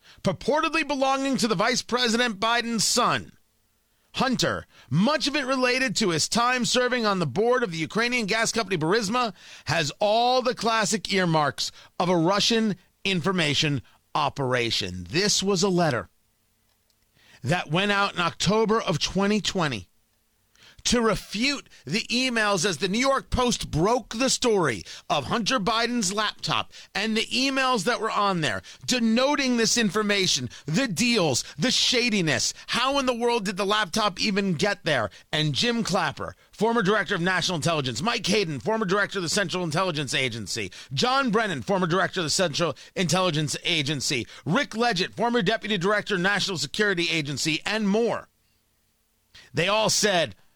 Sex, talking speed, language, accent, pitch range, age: male, 150 wpm, English, American, 160-230 Hz, 40-59